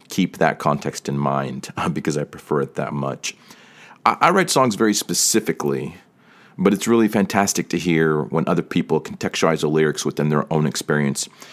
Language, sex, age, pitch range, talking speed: English, male, 30-49, 75-100 Hz, 175 wpm